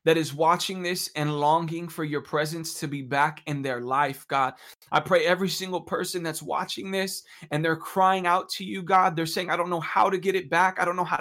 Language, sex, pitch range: English, male, 180-230 Hz